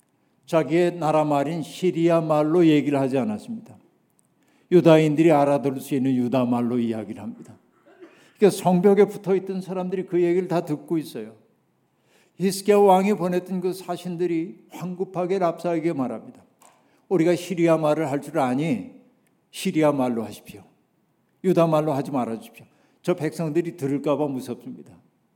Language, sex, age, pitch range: Korean, male, 60-79, 145-180 Hz